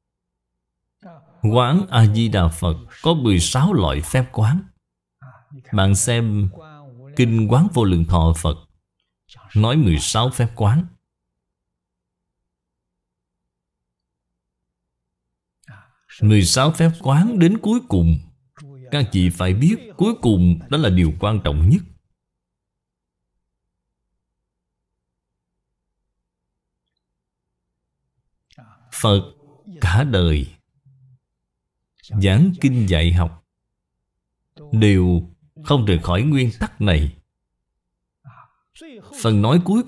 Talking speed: 85 wpm